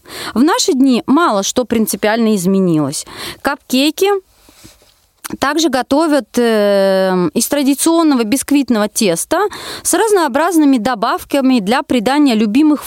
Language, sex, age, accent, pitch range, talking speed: Russian, female, 30-49, native, 225-310 Hz, 95 wpm